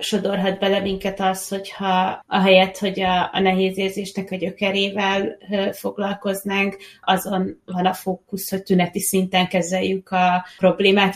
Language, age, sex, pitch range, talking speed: Hungarian, 20-39, female, 180-195 Hz, 135 wpm